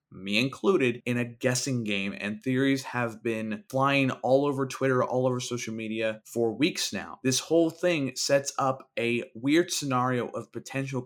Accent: American